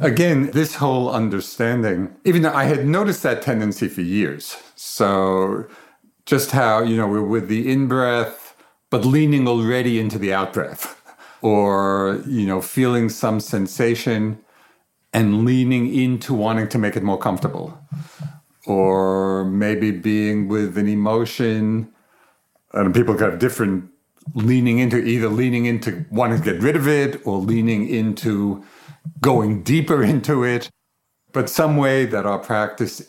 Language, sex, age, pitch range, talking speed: English, male, 50-69, 105-135 Hz, 140 wpm